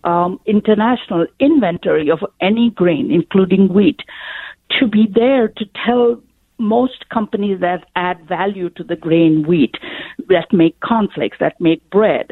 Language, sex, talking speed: English, female, 135 wpm